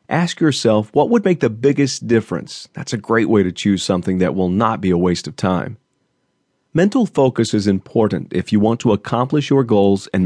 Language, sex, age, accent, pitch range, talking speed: English, male, 40-59, American, 95-125 Hz, 205 wpm